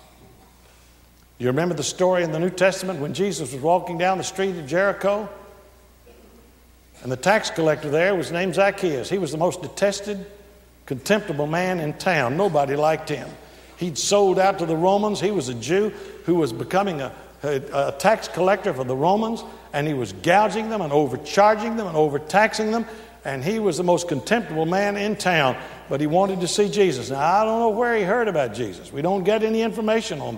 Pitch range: 155-205 Hz